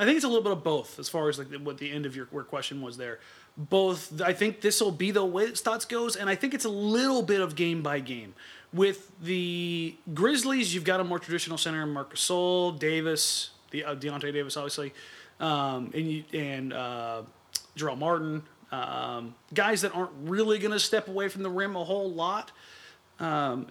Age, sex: 30-49, male